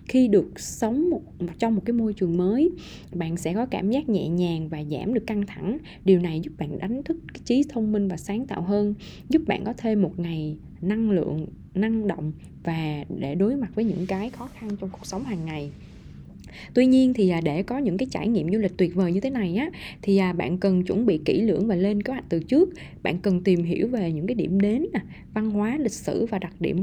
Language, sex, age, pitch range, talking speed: Vietnamese, female, 20-39, 175-220 Hz, 235 wpm